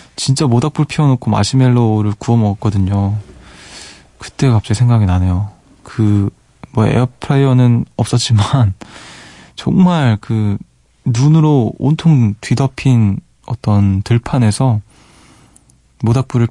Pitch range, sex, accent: 105-135 Hz, male, native